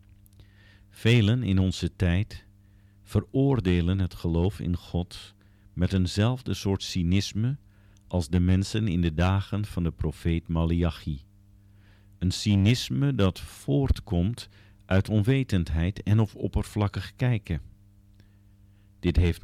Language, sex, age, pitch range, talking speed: Dutch, male, 50-69, 90-100 Hz, 110 wpm